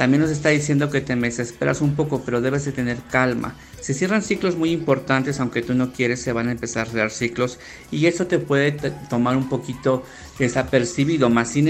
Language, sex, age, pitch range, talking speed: Spanish, male, 50-69, 120-155 Hz, 210 wpm